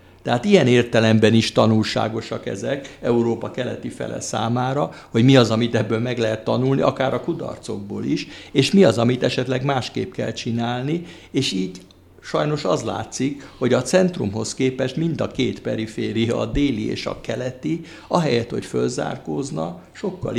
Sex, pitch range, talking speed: male, 110-130 Hz, 150 wpm